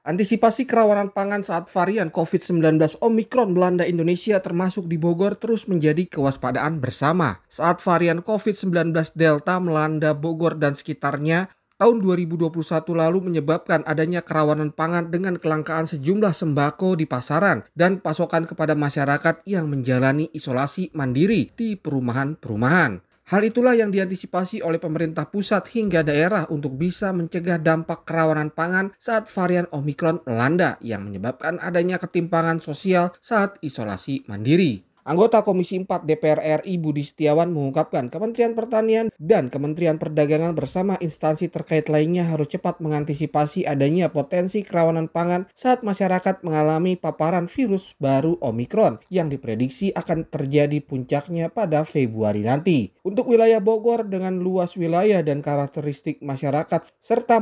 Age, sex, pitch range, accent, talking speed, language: 30-49, male, 150-185 Hz, native, 130 wpm, Indonesian